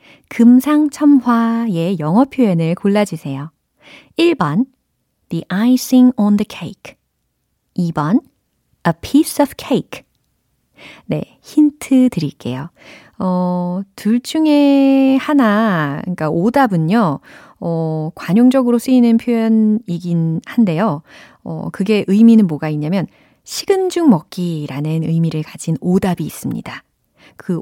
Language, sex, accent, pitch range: Korean, female, native, 165-260 Hz